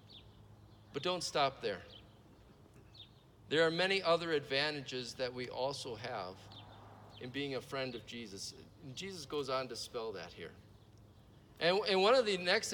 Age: 50-69